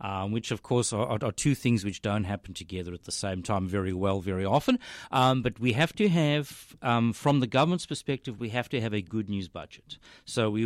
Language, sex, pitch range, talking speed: English, male, 100-140 Hz, 230 wpm